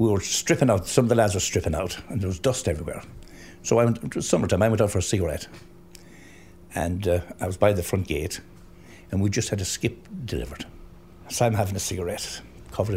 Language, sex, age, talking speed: English, male, 60-79, 225 wpm